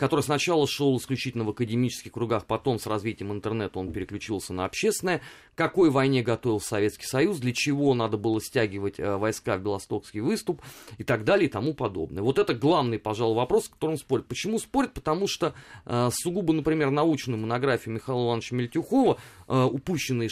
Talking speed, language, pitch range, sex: 160 wpm, Russian, 110-150 Hz, male